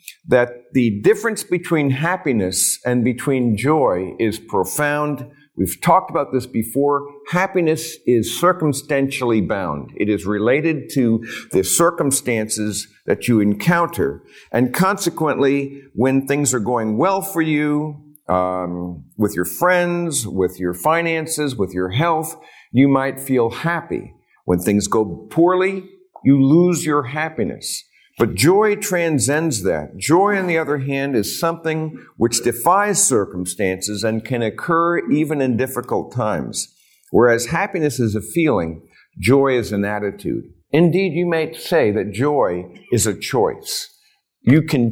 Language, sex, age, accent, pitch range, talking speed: English, male, 50-69, American, 115-170 Hz, 135 wpm